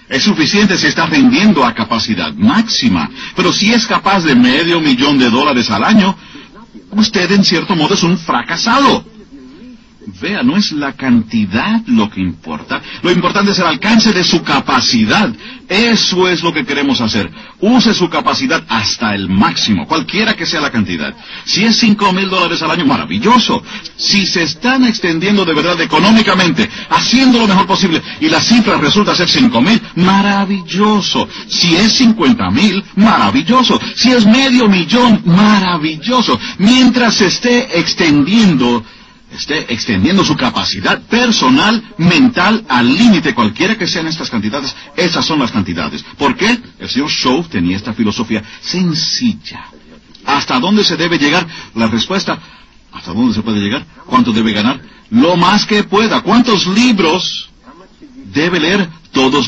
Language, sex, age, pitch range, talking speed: English, male, 50-69, 175-235 Hz, 150 wpm